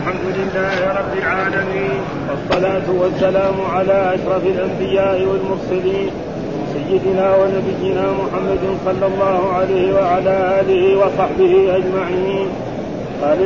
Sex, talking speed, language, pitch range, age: male, 100 wpm, Arabic, 185-195 Hz, 40-59